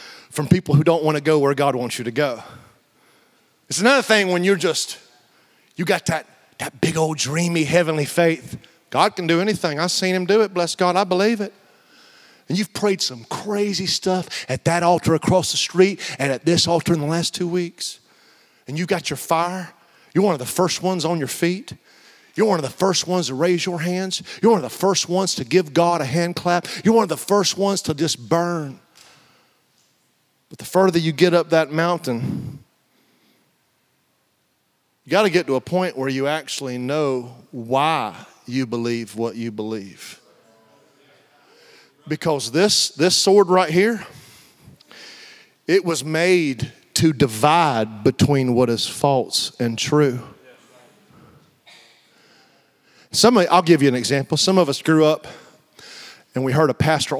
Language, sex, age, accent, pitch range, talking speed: English, male, 40-59, American, 135-180 Hz, 175 wpm